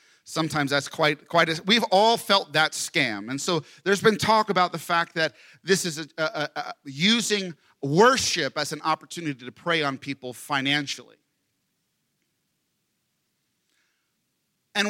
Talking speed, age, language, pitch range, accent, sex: 145 wpm, 40-59, English, 130-170 Hz, American, male